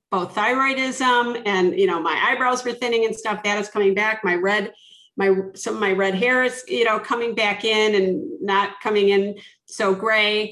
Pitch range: 195-240 Hz